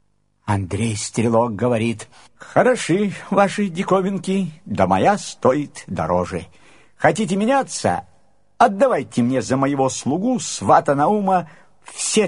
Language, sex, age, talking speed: Russian, male, 60-79, 95 wpm